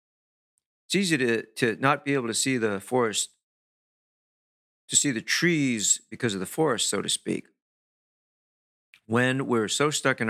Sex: male